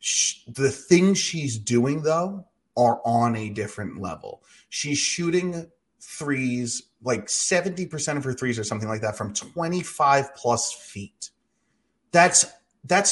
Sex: male